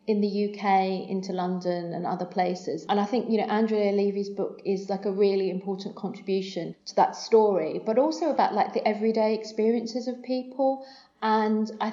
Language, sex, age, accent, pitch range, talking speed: English, female, 40-59, British, 190-220 Hz, 180 wpm